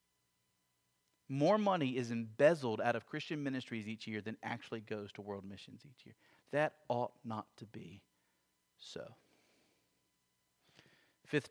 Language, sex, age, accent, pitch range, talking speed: English, male, 40-59, American, 125-205 Hz, 130 wpm